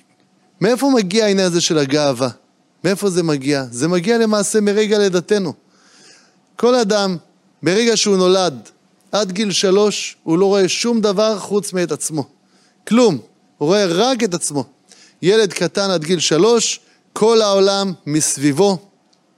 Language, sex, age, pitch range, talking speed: Hebrew, male, 30-49, 165-215 Hz, 135 wpm